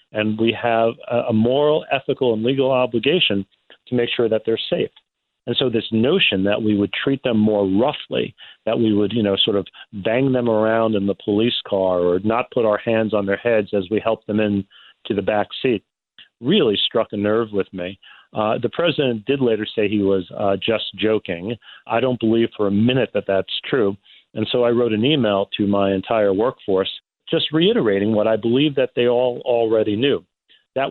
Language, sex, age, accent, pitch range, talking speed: English, male, 40-59, American, 105-120 Hz, 200 wpm